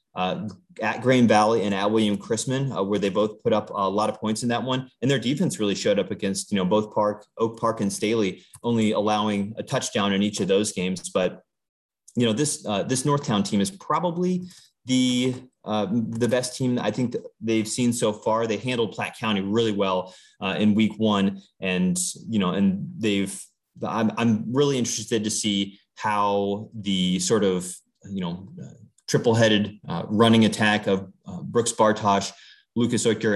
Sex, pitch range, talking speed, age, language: male, 100-120 Hz, 185 wpm, 30-49, English